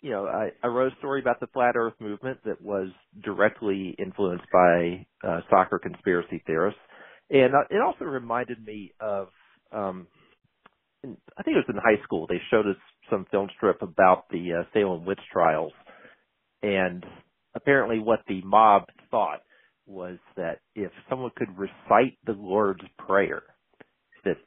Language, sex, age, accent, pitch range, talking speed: English, male, 50-69, American, 100-145 Hz, 155 wpm